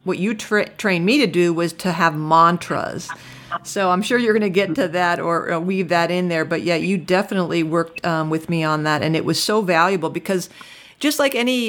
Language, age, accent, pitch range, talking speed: English, 40-59, American, 170-210 Hz, 225 wpm